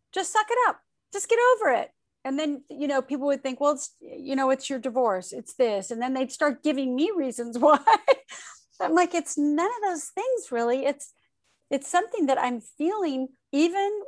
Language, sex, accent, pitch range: English, female, American, 210-280 Hz